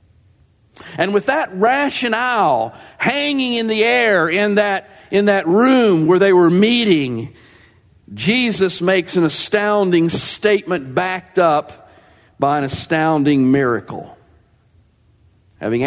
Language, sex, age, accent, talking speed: English, male, 50-69, American, 105 wpm